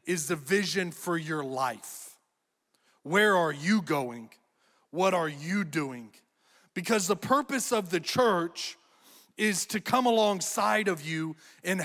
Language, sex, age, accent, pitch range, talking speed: English, male, 30-49, American, 165-200 Hz, 135 wpm